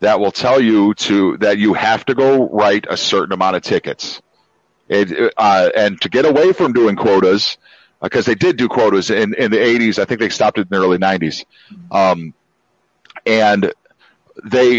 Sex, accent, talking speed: male, American, 190 wpm